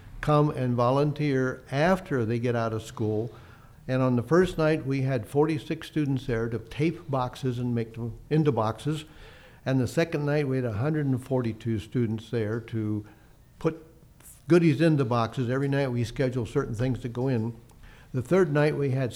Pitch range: 120-150 Hz